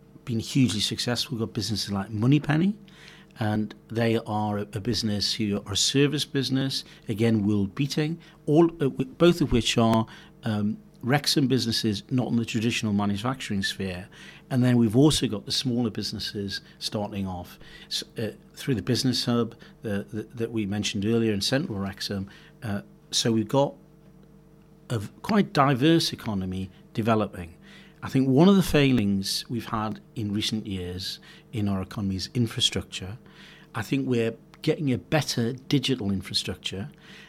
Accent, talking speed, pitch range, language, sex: British, 140 wpm, 105-135 Hz, English, male